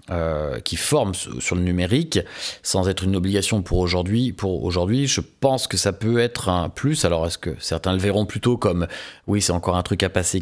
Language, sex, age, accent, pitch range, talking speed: French, male, 30-49, French, 90-120 Hz, 215 wpm